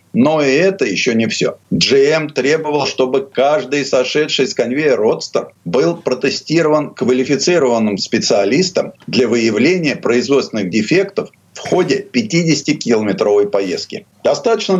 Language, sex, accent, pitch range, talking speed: Russian, male, native, 130-185 Hz, 110 wpm